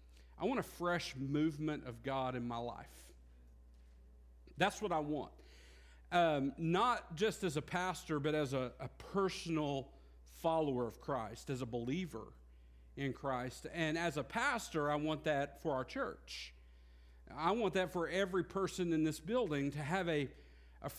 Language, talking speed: English, 160 wpm